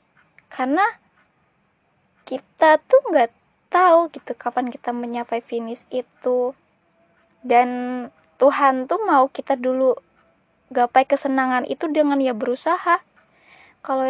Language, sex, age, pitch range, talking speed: Indonesian, female, 20-39, 240-305 Hz, 100 wpm